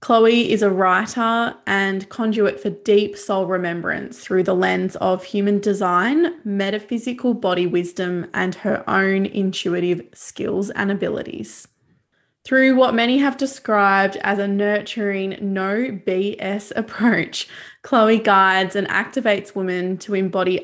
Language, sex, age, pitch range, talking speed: English, female, 20-39, 190-220 Hz, 130 wpm